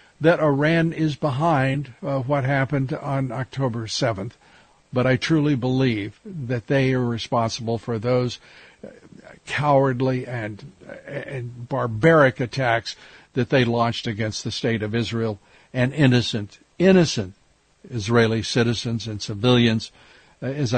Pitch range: 120-145 Hz